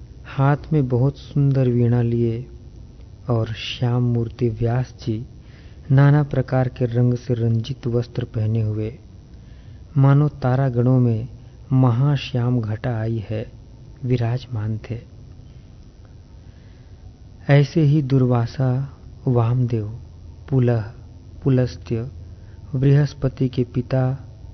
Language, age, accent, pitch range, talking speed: Hindi, 40-59, native, 110-130 Hz, 95 wpm